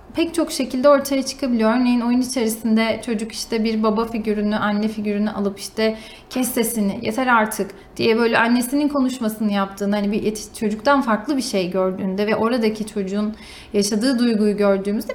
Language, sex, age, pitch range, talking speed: Turkish, female, 30-49, 220-295 Hz, 155 wpm